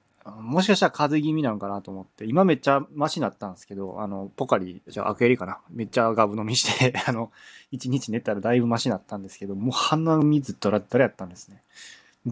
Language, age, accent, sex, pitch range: Japanese, 20-39, native, male, 100-155 Hz